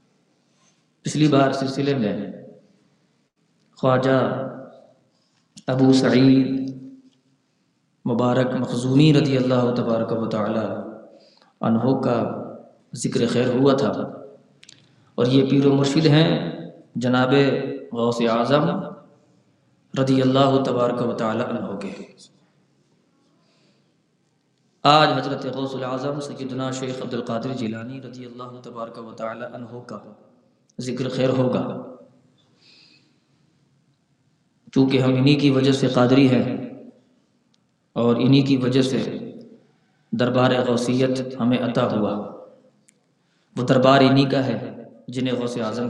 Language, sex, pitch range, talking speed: Urdu, male, 125-140 Hz, 100 wpm